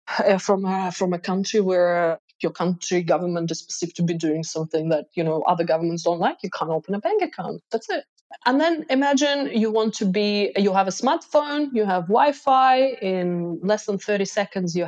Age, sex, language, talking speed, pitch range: 20-39, female, English, 205 wpm, 180-265 Hz